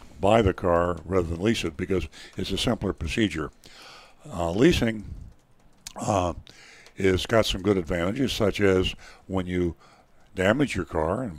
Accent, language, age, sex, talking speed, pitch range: American, English, 60-79, male, 150 wpm, 90-110 Hz